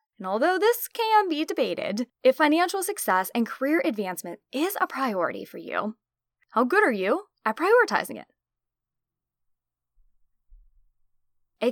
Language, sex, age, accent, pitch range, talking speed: English, female, 10-29, American, 195-275 Hz, 130 wpm